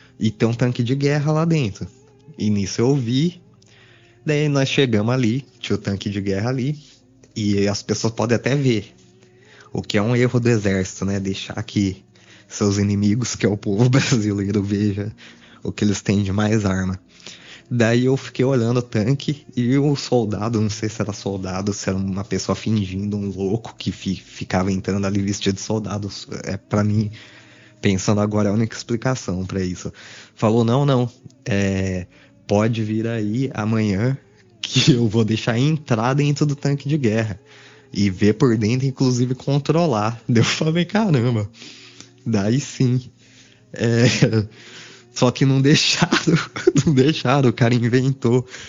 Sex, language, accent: male, Portuguese, Brazilian